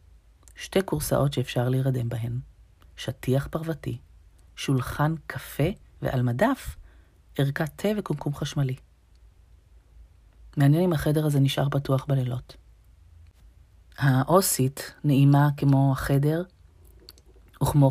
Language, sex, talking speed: Hebrew, female, 90 wpm